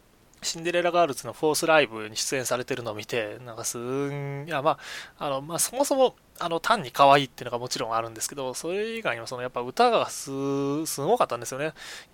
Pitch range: 125-180 Hz